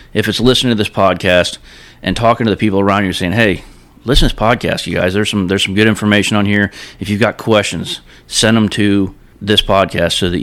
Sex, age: male, 30-49